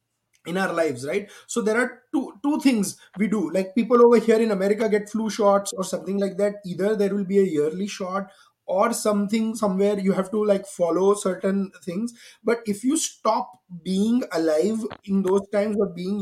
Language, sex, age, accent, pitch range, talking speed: English, male, 20-39, Indian, 185-225 Hz, 195 wpm